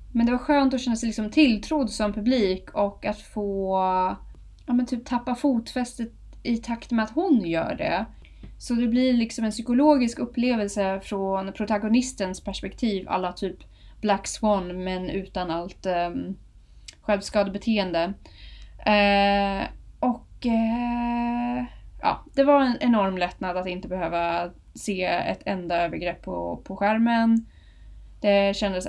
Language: Swedish